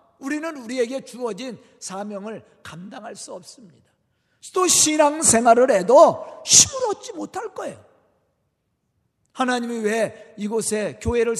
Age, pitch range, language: 40-59, 200-290 Hz, Korean